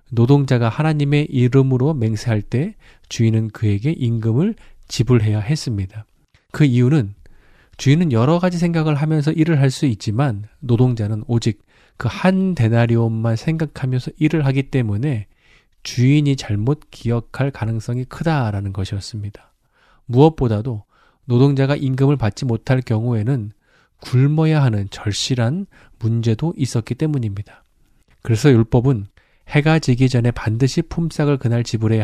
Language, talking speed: English, 105 wpm